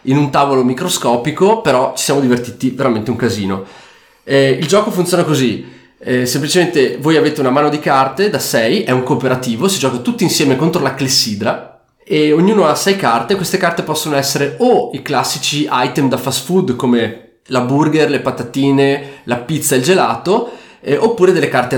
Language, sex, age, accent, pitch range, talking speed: Italian, male, 20-39, native, 125-165 Hz, 180 wpm